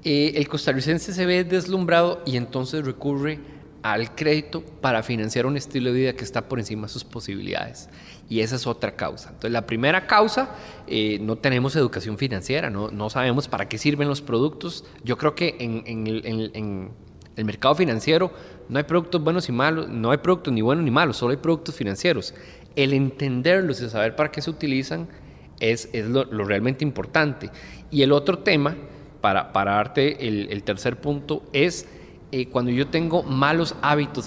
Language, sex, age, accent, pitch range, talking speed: Spanish, male, 30-49, Mexican, 115-155 Hz, 185 wpm